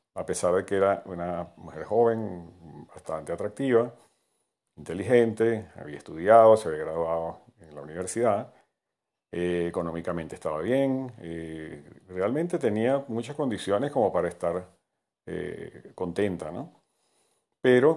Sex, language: male, Spanish